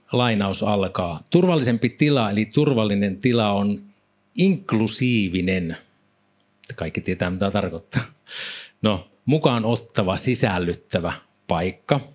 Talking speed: 90 wpm